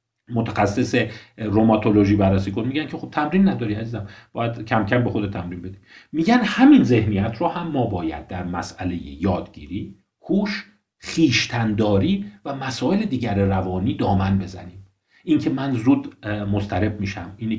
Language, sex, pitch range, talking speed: Persian, male, 100-130 Hz, 145 wpm